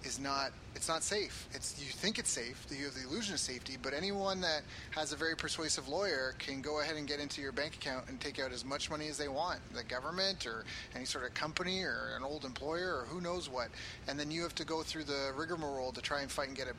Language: English